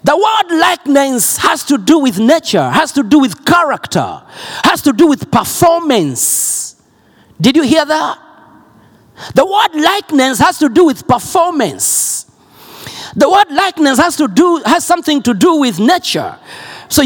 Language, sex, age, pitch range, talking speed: Swedish, male, 50-69, 225-330 Hz, 150 wpm